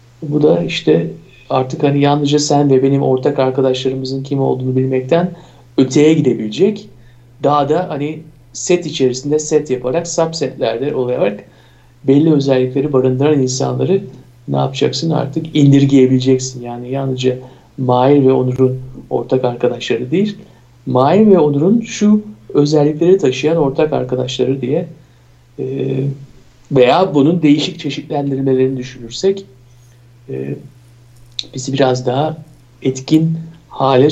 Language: Turkish